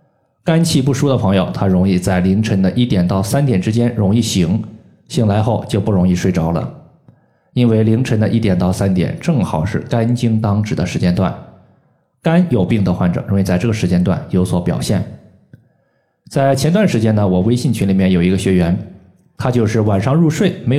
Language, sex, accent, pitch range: Chinese, male, native, 95-120 Hz